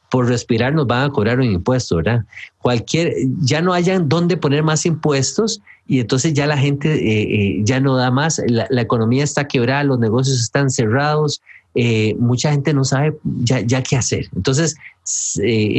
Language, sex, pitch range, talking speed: English, male, 115-150 Hz, 180 wpm